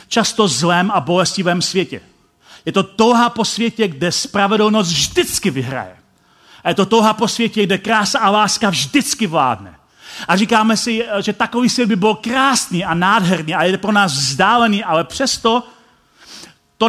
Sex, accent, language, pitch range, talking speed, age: male, native, Czech, 165-225 Hz, 160 wpm, 40-59